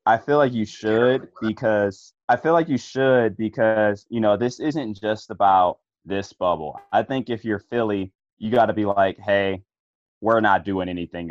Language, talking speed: English, 185 wpm